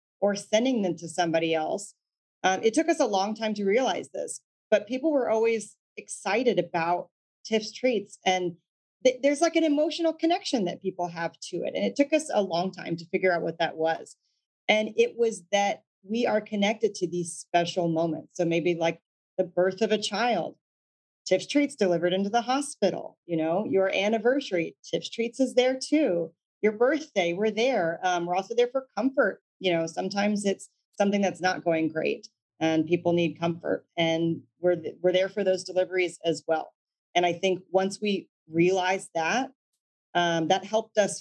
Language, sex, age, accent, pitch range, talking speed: English, female, 40-59, American, 170-220 Hz, 185 wpm